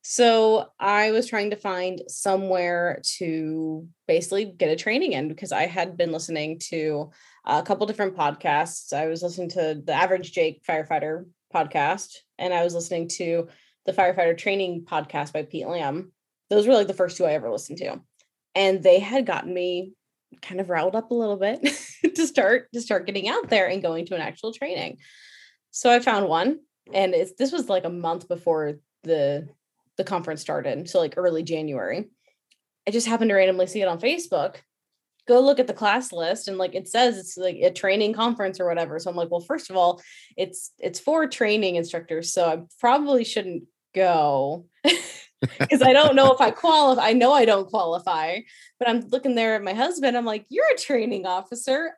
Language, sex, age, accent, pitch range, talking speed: English, female, 20-39, American, 170-235 Hz, 190 wpm